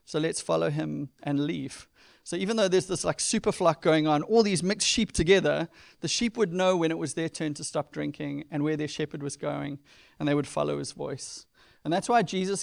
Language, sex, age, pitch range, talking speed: English, male, 30-49, 145-170 Hz, 235 wpm